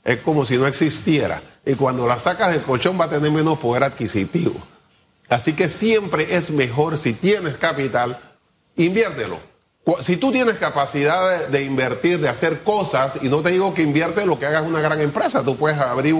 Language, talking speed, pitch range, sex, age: Spanish, 185 wpm, 135-180 Hz, male, 30-49